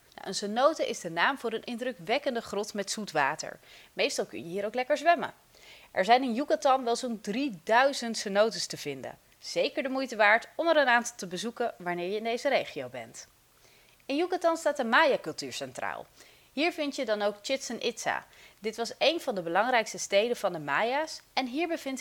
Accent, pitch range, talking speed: Dutch, 205-275 Hz, 195 wpm